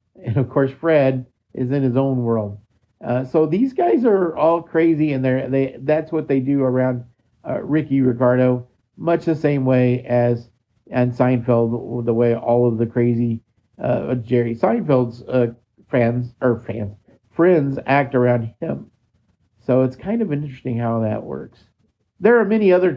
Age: 50-69